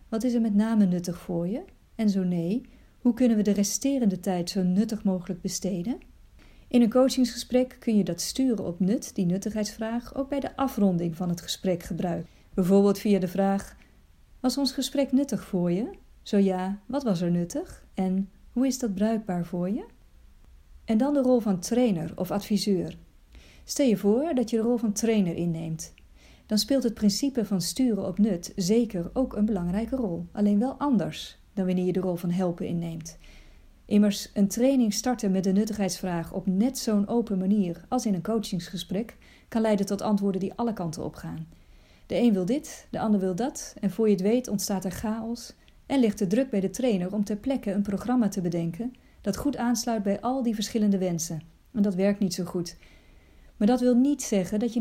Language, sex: Dutch, female